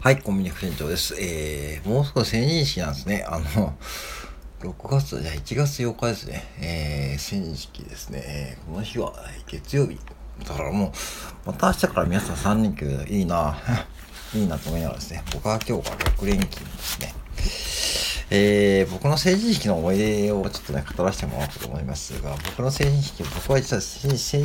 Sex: male